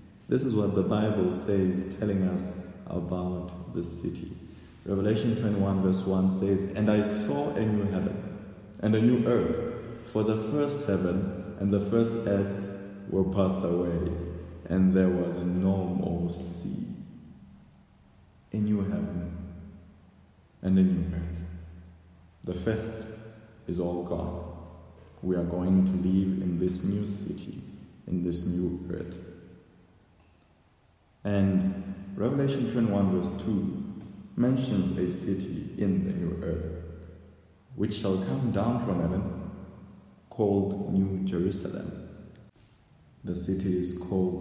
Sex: male